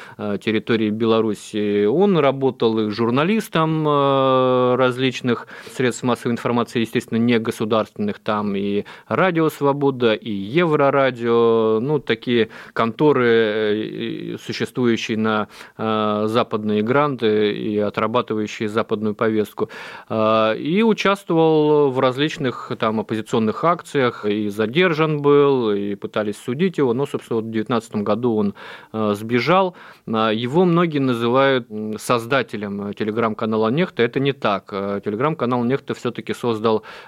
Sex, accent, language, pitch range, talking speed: male, native, Russian, 110-135 Hz, 100 wpm